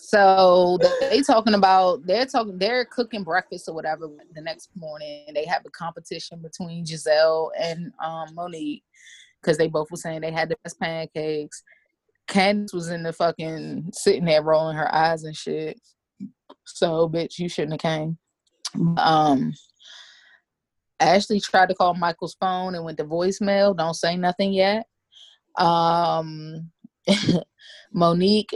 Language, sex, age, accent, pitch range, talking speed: English, female, 20-39, American, 160-195 Hz, 145 wpm